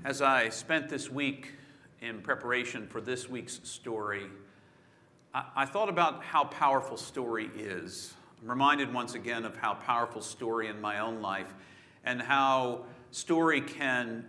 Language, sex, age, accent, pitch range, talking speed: English, male, 50-69, American, 115-150 Hz, 145 wpm